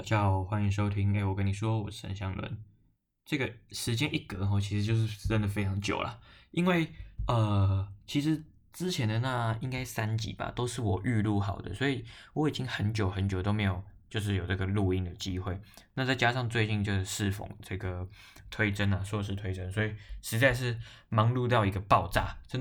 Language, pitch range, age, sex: Chinese, 95-115 Hz, 20-39, male